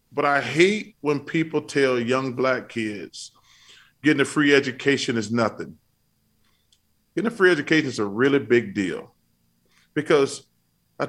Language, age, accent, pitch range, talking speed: English, 40-59, American, 125-160 Hz, 140 wpm